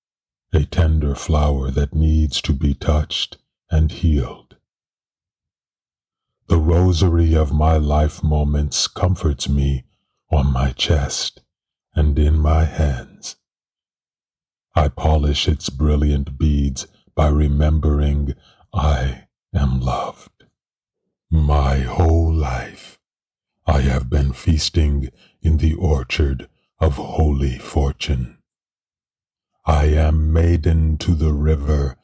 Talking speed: 100 wpm